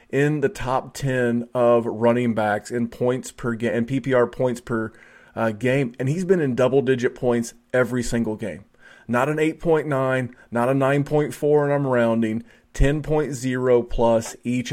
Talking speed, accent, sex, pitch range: 155 wpm, American, male, 115-130 Hz